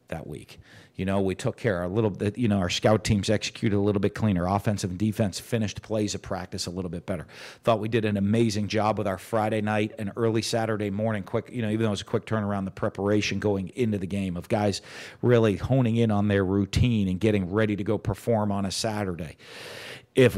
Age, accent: 50-69, American